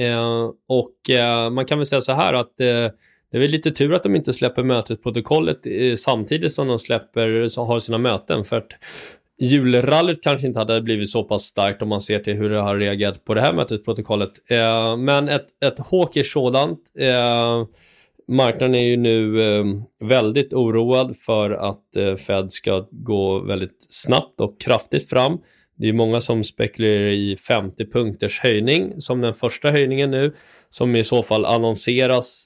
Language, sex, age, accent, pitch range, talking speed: Swedish, male, 20-39, native, 110-130 Hz, 160 wpm